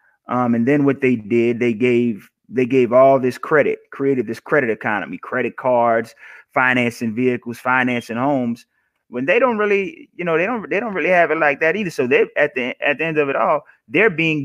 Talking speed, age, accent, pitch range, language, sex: 210 wpm, 30-49, American, 125-165 Hz, English, male